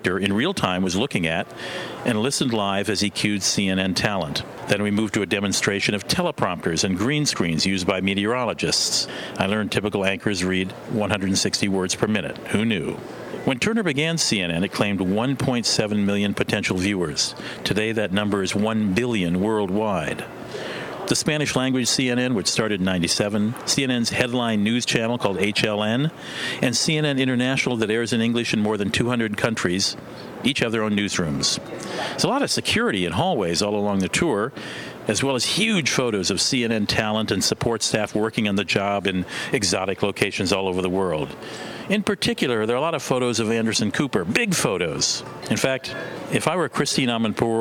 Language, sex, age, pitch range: English, male, 50-69, 100-120 Hz